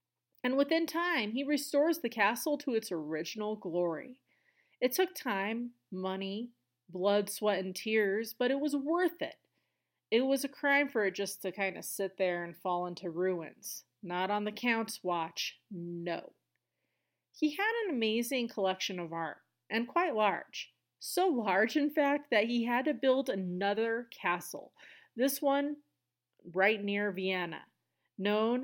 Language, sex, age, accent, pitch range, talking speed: English, female, 30-49, American, 190-260 Hz, 155 wpm